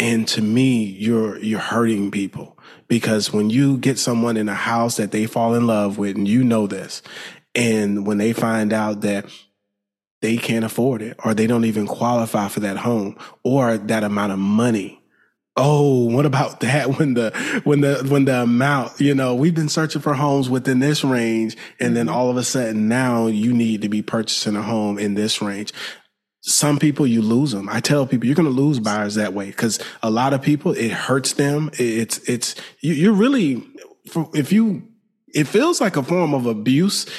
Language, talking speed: English, 200 wpm